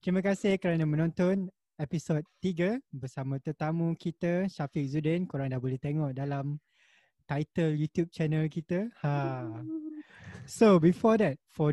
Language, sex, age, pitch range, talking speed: Malay, male, 20-39, 145-180 Hz, 130 wpm